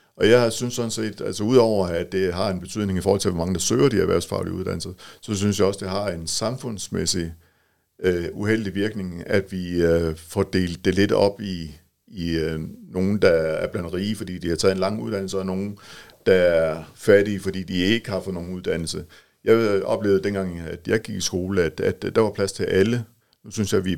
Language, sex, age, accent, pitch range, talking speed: English, male, 50-69, Danish, 90-105 Hz, 215 wpm